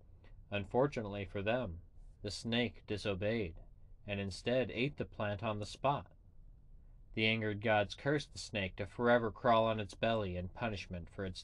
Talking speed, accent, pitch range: 155 wpm, American, 100-120 Hz